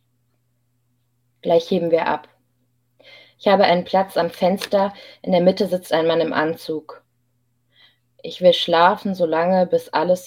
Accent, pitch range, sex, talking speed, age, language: German, 125-175 Hz, female, 140 wpm, 20-39, German